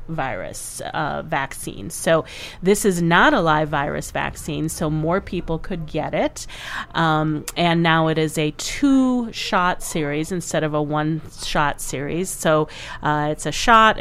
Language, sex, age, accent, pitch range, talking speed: English, female, 30-49, American, 155-190 Hz, 160 wpm